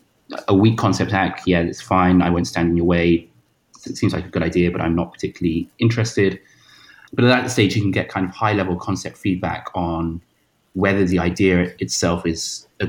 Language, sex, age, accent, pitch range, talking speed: English, male, 30-49, British, 85-100 Hz, 200 wpm